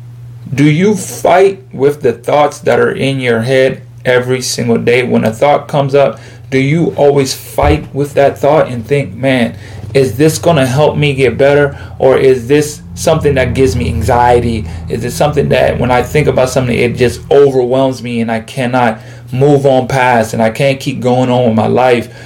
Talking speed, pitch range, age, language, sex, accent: 195 wpm, 120-145 Hz, 30-49, English, male, American